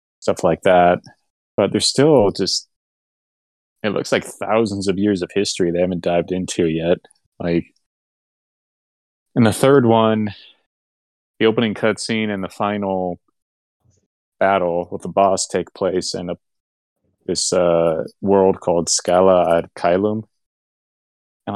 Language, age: English, 30-49